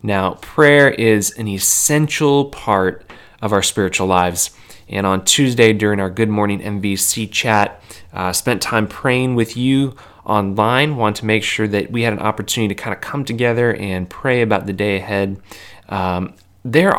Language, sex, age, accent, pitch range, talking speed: English, male, 20-39, American, 95-115 Hz, 175 wpm